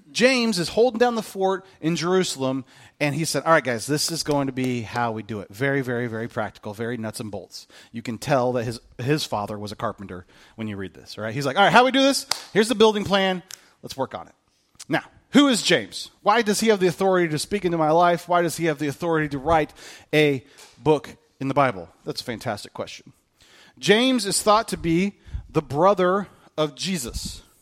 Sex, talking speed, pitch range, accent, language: male, 225 wpm, 125-190 Hz, American, English